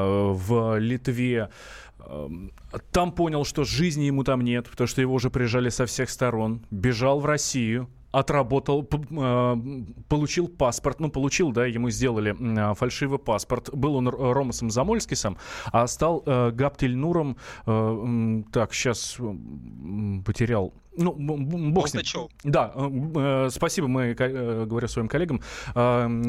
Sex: male